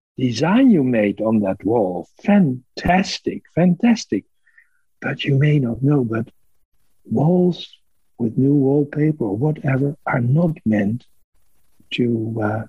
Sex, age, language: male, 60-79, English